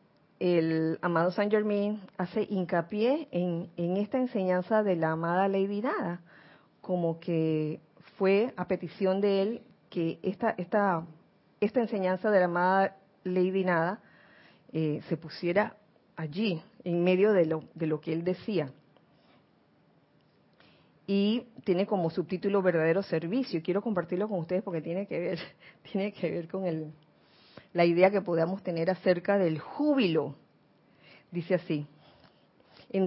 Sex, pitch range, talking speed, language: female, 175-210 Hz, 135 wpm, Spanish